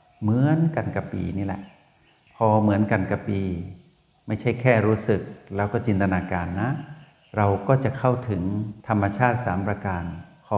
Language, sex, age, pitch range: Thai, male, 60-79, 95-120 Hz